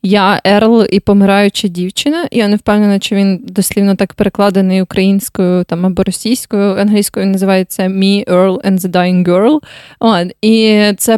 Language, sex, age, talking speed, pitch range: Ukrainian, female, 20-39, 150 wpm, 200-240 Hz